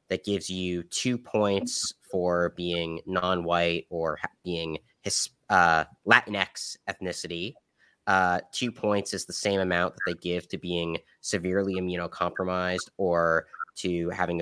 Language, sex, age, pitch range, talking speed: English, male, 20-39, 85-110 Hz, 125 wpm